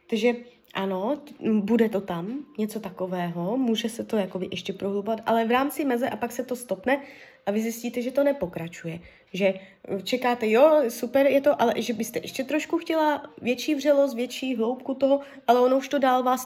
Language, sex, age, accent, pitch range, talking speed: Czech, female, 20-39, native, 215-265 Hz, 180 wpm